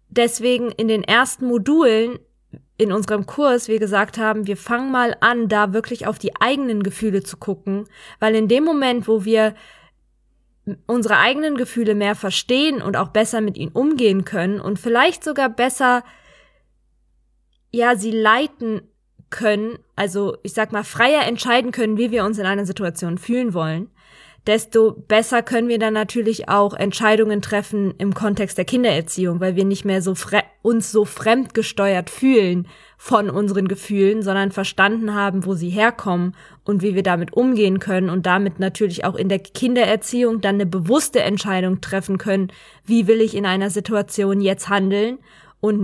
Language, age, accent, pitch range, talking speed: German, 20-39, German, 195-240 Hz, 160 wpm